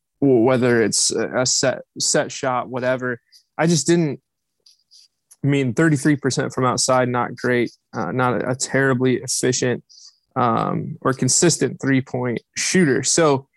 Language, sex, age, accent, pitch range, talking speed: English, male, 20-39, American, 125-150 Hz, 135 wpm